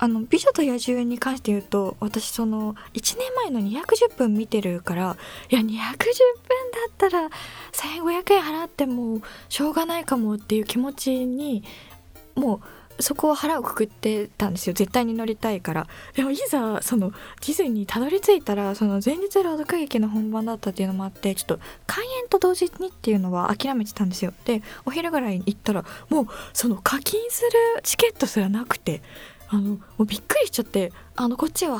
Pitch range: 205-280 Hz